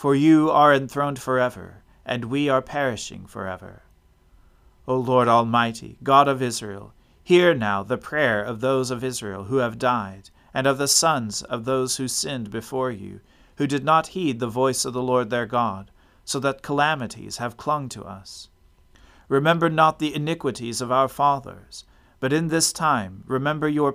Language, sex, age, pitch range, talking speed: English, male, 40-59, 100-140 Hz, 170 wpm